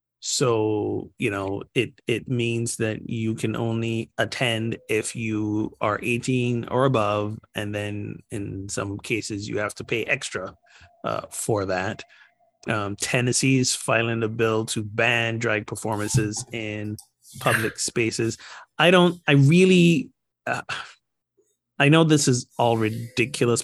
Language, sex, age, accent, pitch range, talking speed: English, male, 30-49, American, 110-130 Hz, 135 wpm